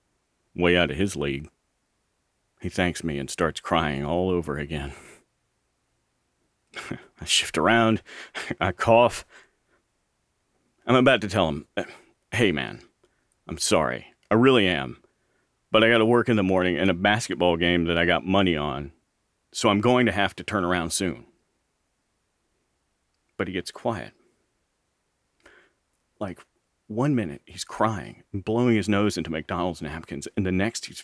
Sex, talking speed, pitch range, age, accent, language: male, 145 wpm, 85-100 Hz, 40-59, American, English